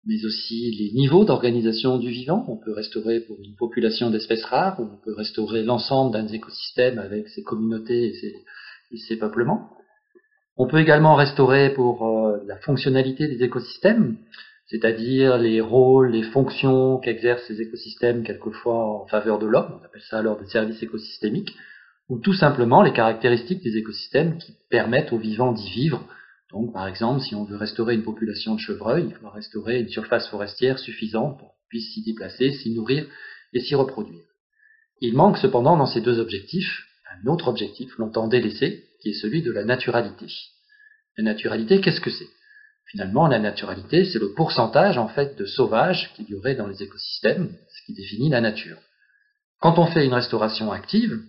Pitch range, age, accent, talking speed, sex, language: 110-145 Hz, 40-59, French, 175 wpm, male, French